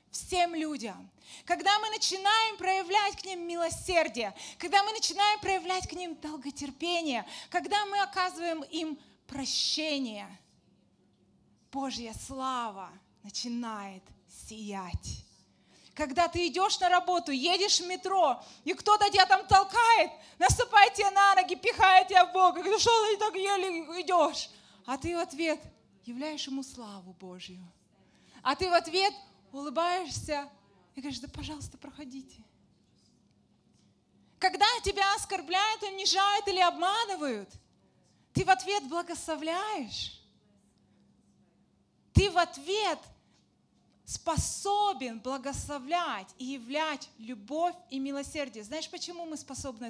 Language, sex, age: Russian, female, 20-39